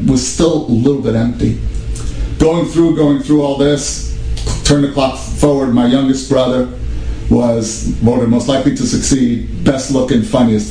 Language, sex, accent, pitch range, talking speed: English, male, American, 105-125 Hz, 150 wpm